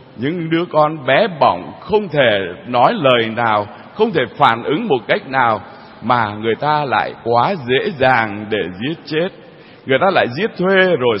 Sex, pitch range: male, 130-185 Hz